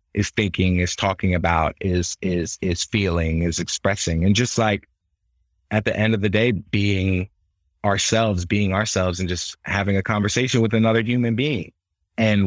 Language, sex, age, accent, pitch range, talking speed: English, male, 30-49, American, 90-110 Hz, 165 wpm